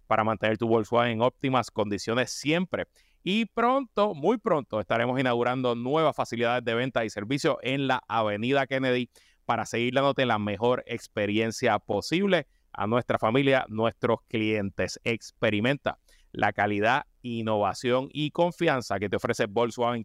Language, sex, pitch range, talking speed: Spanish, male, 115-150 Hz, 140 wpm